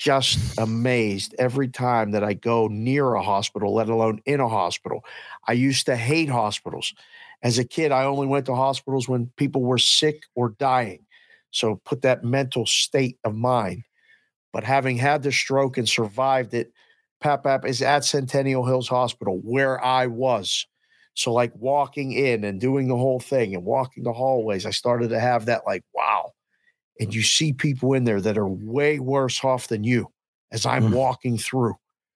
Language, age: English, 50-69